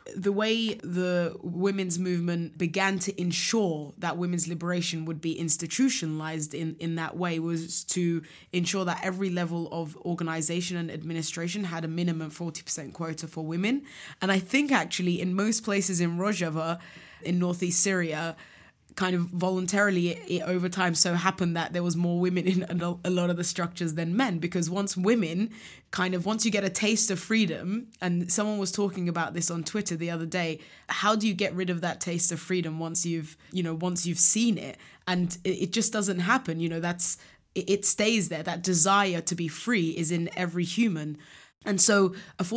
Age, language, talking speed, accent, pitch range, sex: 20-39, English, 190 wpm, British, 170-190 Hz, female